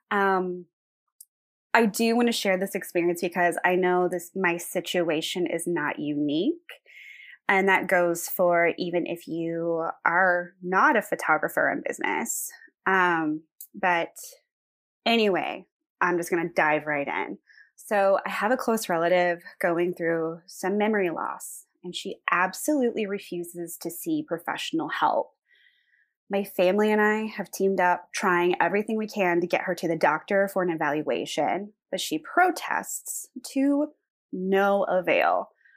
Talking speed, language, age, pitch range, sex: 145 wpm, English, 20-39, 175-215 Hz, female